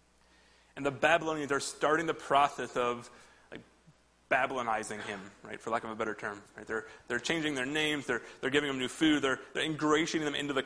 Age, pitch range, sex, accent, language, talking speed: 30-49, 115-140 Hz, male, American, English, 205 wpm